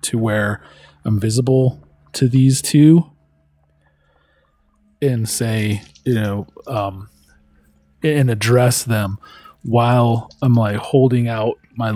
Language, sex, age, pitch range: English, male, 20-39, 100-125 Hz